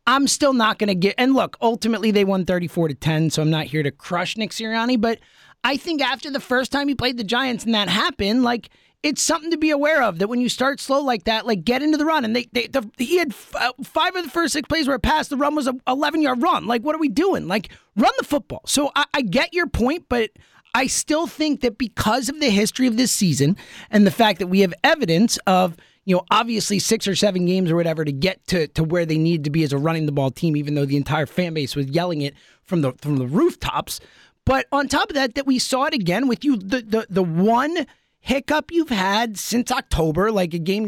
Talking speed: 255 wpm